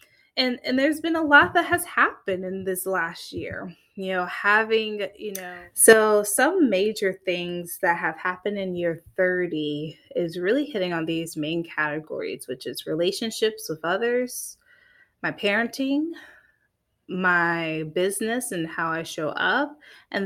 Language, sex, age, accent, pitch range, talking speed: English, female, 20-39, American, 175-220 Hz, 150 wpm